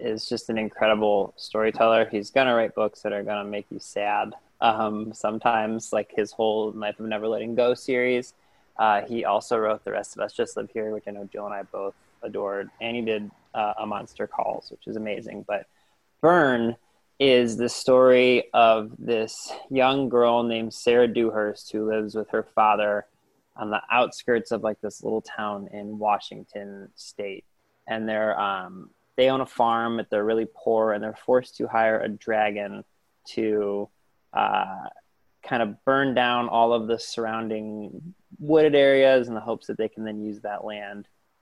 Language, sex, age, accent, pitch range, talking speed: English, male, 20-39, American, 105-120 Hz, 180 wpm